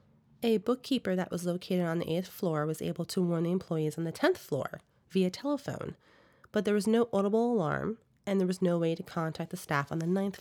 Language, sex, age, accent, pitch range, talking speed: English, female, 30-49, American, 165-200 Hz, 225 wpm